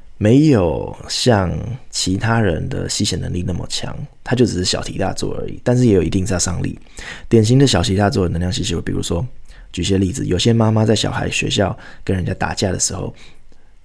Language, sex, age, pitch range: Chinese, male, 20-39, 90-115 Hz